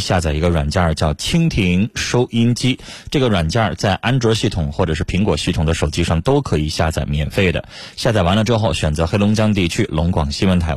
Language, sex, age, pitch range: Chinese, male, 30-49, 80-110 Hz